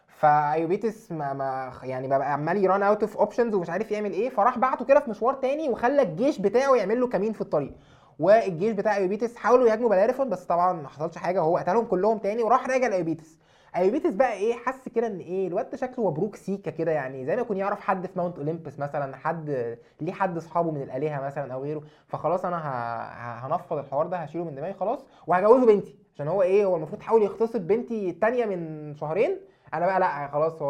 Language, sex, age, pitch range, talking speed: Arabic, male, 20-39, 150-220 Hz, 205 wpm